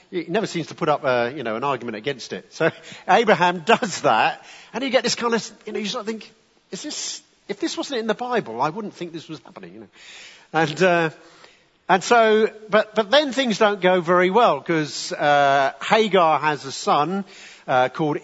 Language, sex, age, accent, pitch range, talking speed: English, male, 50-69, British, 140-185 Hz, 215 wpm